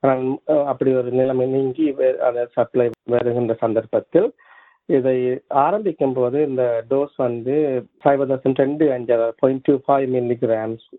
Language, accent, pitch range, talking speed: Tamil, native, 115-140 Hz, 125 wpm